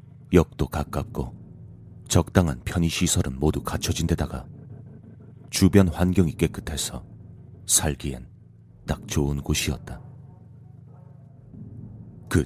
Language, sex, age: Korean, male, 30-49